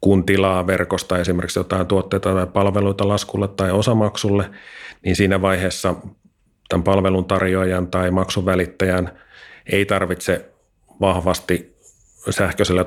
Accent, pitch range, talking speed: native, 90-95 Hz, 105 wpm